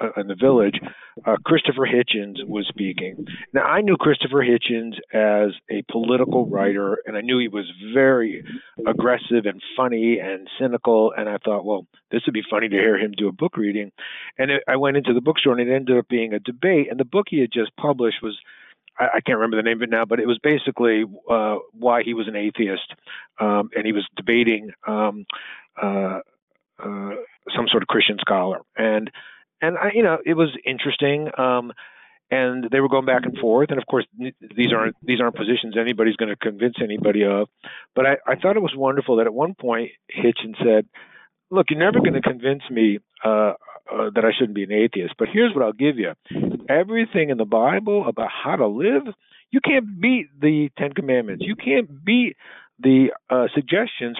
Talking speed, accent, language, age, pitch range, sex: 195 wpm, American, English, 50-69, 110-140 Hz, male